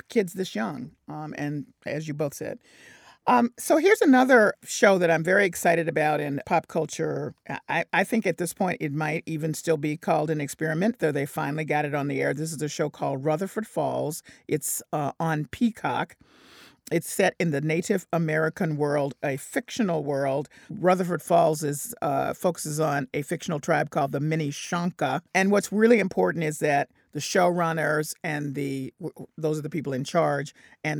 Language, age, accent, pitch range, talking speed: English, 50-69, American, 145-185 Hz, 180 wpm